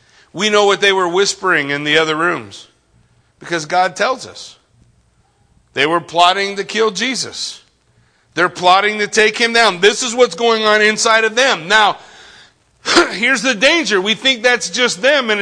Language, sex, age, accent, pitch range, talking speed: English, male, 40-59, American, 145-215 Hz, 170 wpm